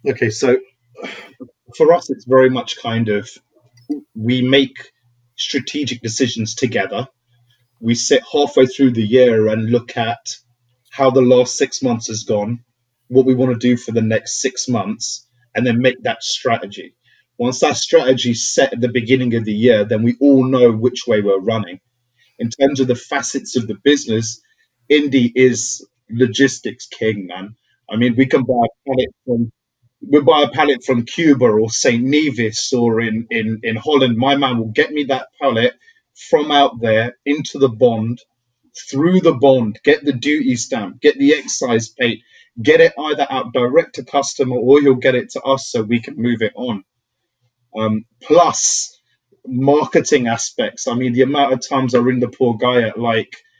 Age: 30-49